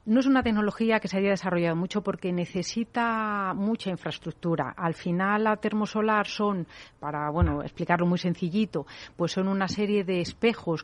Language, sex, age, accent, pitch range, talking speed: Spanish, female, 40-59, Spanish, 170-205 Hz, 160 wpm